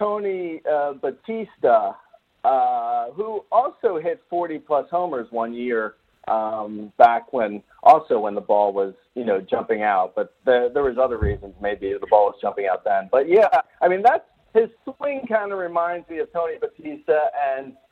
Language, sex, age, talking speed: English, male, 40-59, 170 wpm